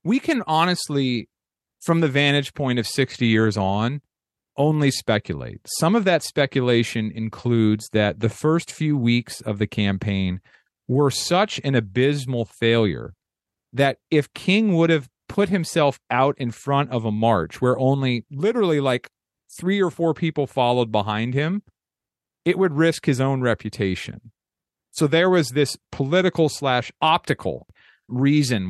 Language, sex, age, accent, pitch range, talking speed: English, male, 40-59, American, 115-160 Hz, 145 wpm